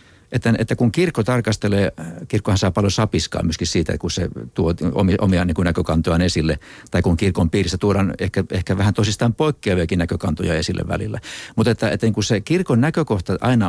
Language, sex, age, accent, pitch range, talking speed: Finnish, male, 60-79, native, 90-115 Hz, 185 wpm